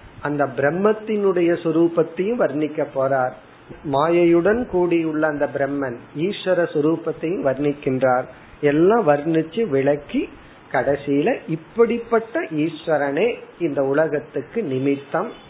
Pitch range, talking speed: 145-190 Hz, 75 wpm